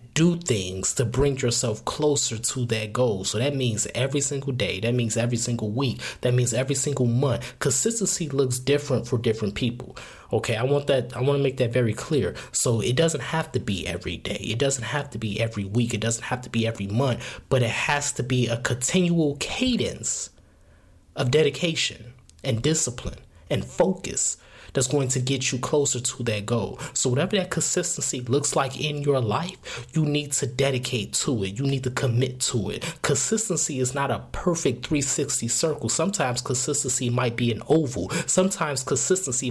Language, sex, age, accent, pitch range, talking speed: English, male, 20-39, American, 115-145 Hz, 185 wpm